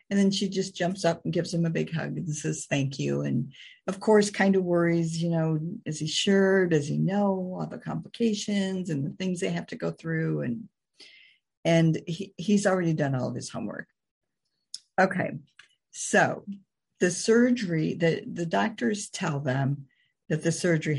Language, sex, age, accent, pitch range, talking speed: English, female, 50-69, American, 135-185 Hz, 175 wpm